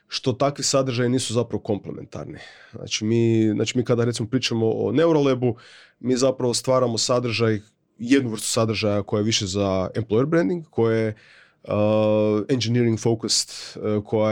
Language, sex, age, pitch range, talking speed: Croatian, male, 30-49, 110-125 Hz, 145 wpm